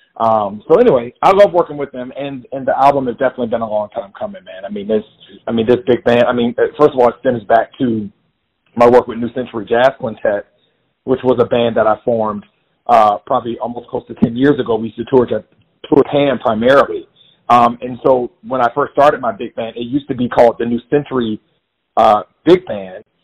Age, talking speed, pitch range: 40-59, 225 wpm, 115-135 Hz